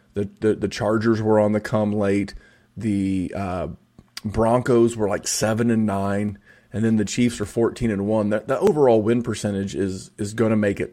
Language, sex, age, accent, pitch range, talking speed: English, male, 30-49, American, 105-120 Hz, 200 wpm